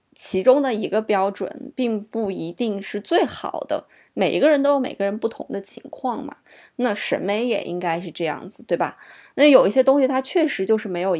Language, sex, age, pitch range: Chinese, female, 20-39, 185-245 Hz